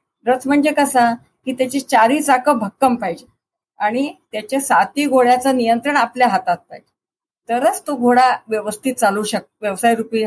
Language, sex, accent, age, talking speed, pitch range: Marathi, female, native, 50-69, 80 wpm, 220-275 Hz